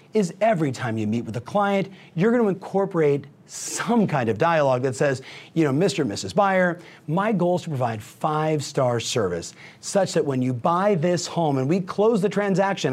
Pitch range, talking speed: 145-185 Hz, 195 wpm